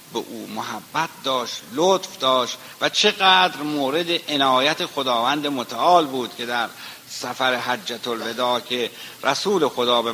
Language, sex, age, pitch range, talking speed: Persian, male, 60-79, 115-145 Hz, 130 wpm